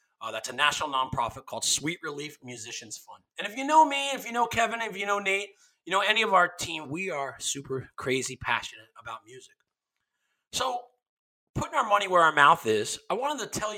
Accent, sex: American, male